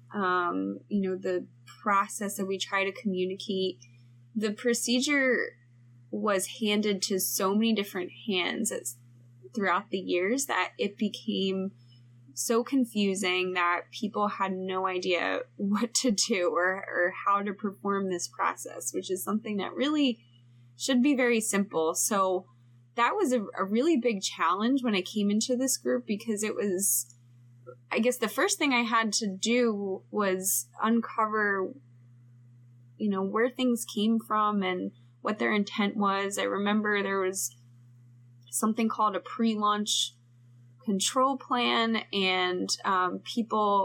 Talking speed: 140 wpm